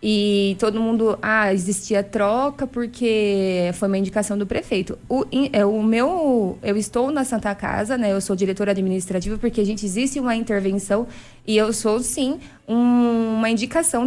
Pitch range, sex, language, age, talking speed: 200-250 Hz, female, Portuguese, 20-39, 160 wpm